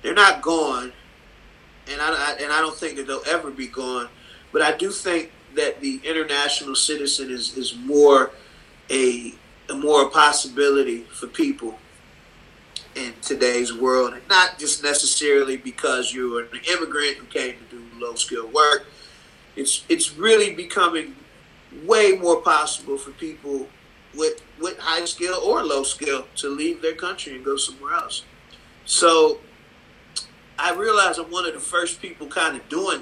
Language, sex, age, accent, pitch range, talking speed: English, male, 40-59, American, 130-170 Hz, 155 wpm